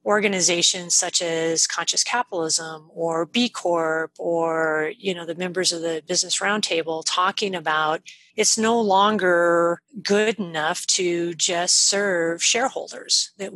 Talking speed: 130 wpm